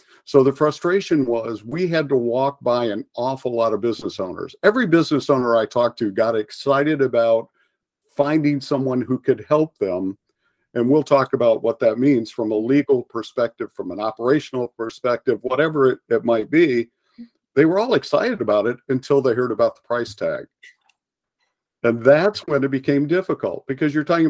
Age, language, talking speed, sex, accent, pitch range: 50-69, English, 180 wpm, male, American, 120-155 Hz